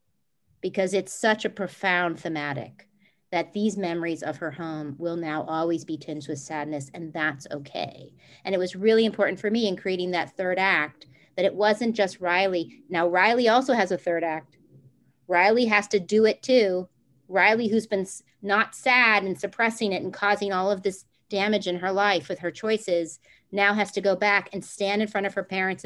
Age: 40-59